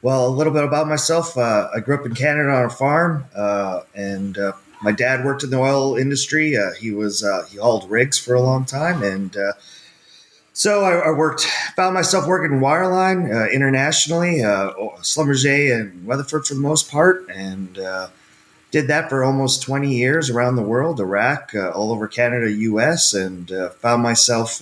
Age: 30-49